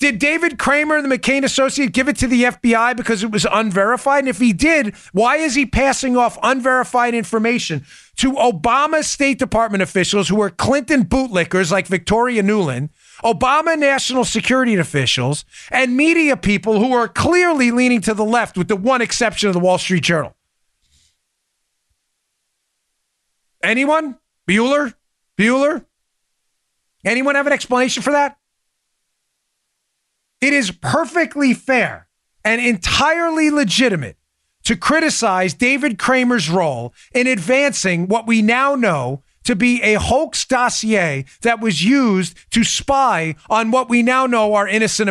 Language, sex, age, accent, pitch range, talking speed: English, male, 40-59, American, 185-260 Hz, 140 wpm